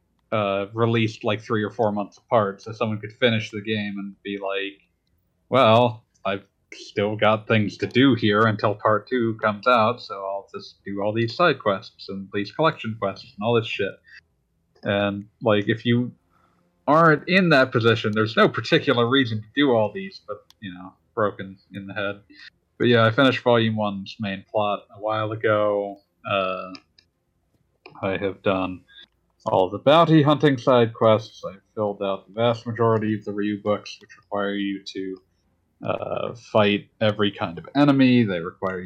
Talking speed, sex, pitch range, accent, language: 175 wpm, male, 100-115 Hz, American, English